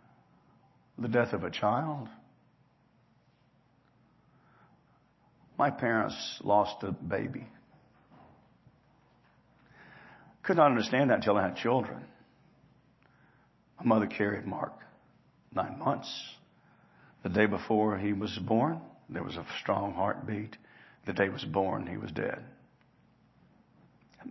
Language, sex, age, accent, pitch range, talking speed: English, male, 60-79, American, 105-125 Hz, 110 wpm